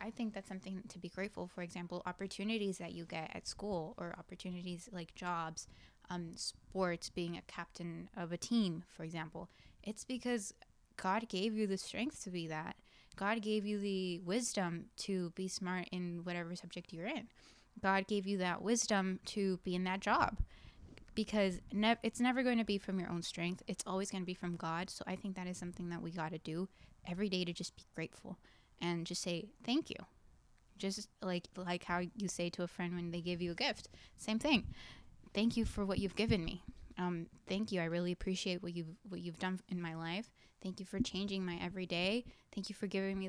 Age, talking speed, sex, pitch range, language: 10-29, 210 wpm, female, 175-200 Hz, English